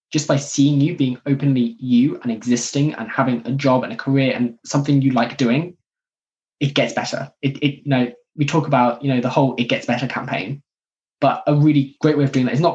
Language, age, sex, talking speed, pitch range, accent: English, 10-29, male, 230 wpm, 125-145 Hz, British